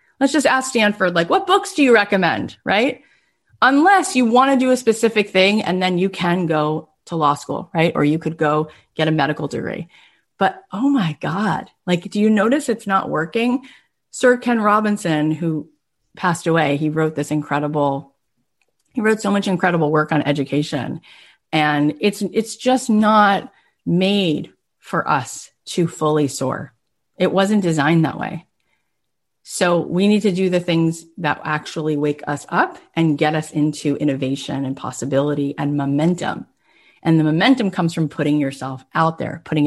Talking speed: 170 wpm